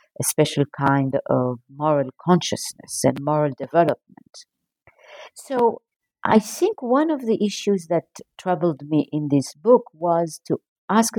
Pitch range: 140-180 Hz